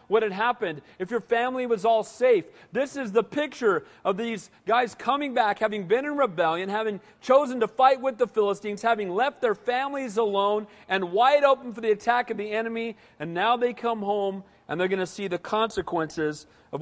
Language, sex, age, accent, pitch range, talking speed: English, male, 40-59, American, 180-240 Hz, 200 wpm